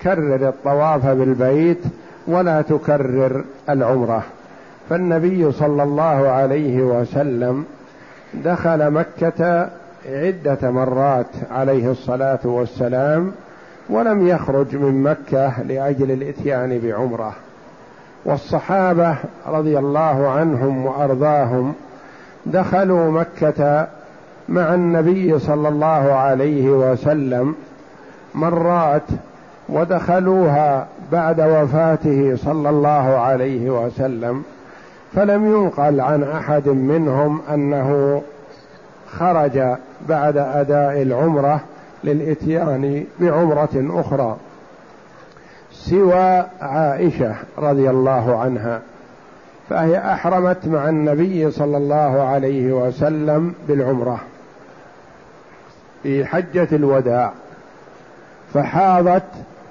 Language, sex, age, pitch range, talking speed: Arabic, male, 50-69, 135-160 Hz, 75 wpm